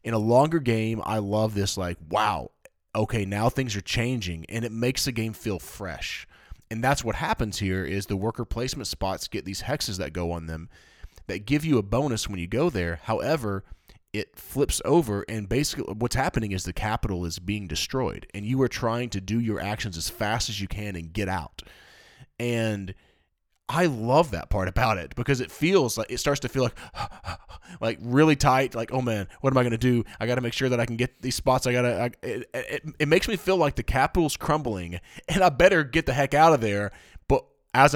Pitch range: 100-135 Hz